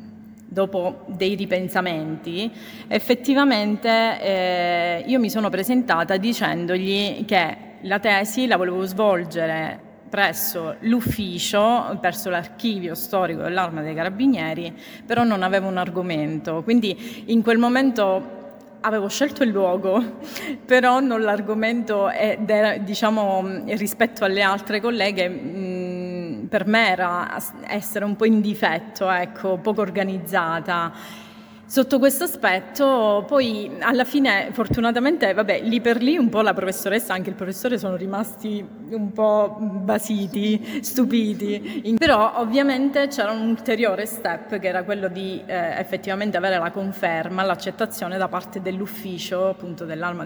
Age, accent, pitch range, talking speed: 30-49, native, 185-225 Hz, 125 wpm